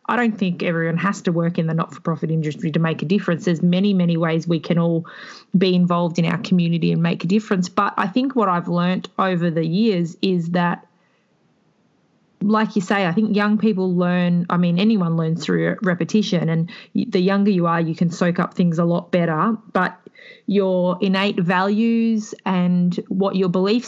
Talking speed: 195 wpm